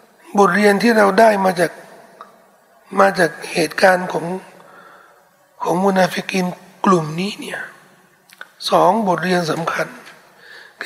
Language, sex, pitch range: Thai, male, 185-240 Hz